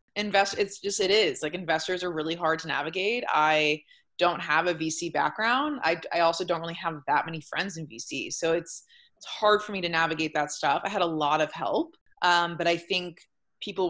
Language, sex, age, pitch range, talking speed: English, female, 20-39, 155-180 Hz, 215 wpm